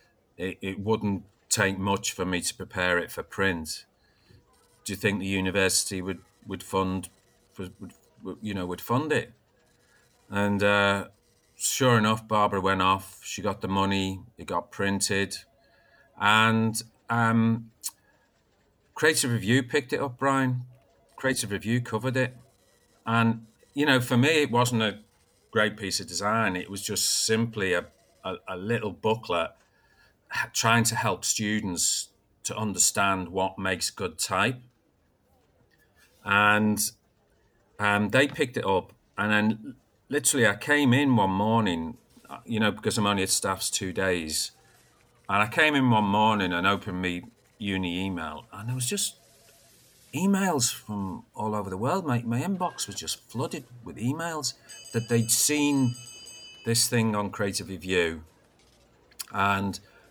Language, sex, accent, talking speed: English, male, British, 145 wpm